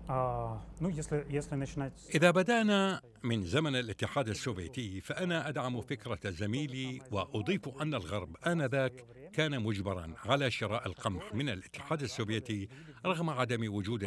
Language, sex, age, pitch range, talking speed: Arabic, male, 60-79, 105-160 Hz, 105 wpm